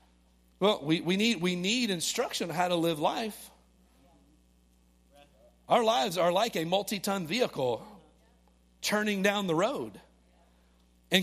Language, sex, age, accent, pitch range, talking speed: English, male, 40-59, American, 140-195 Hz, 130 wpm